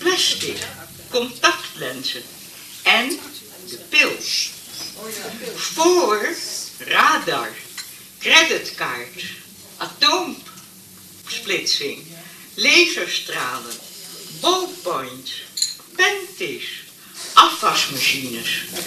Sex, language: female, Dutch